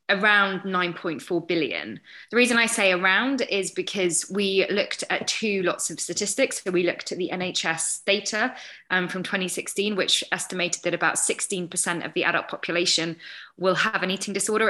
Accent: British